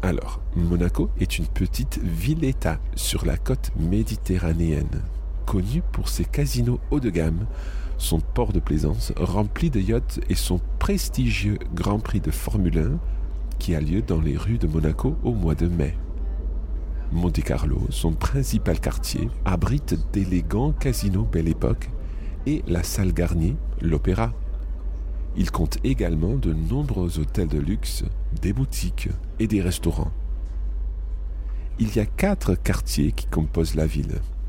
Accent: French